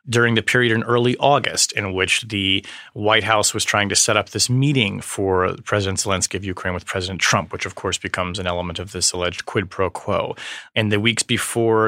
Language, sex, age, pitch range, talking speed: English, male, 30-49, 95-120 Hz, 210 wpm